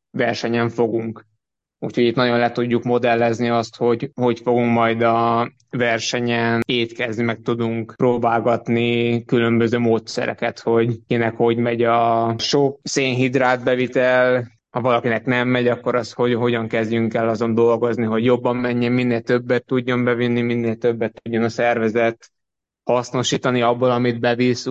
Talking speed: 140 wpm